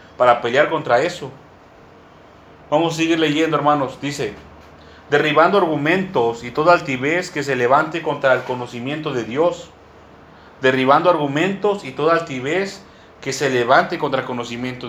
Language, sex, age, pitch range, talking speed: Spanish, male, 40-59, 130-180 Hz, 135 wpm